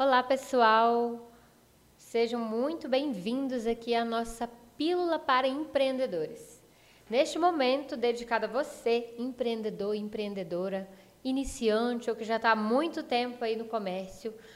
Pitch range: 225-265 Hz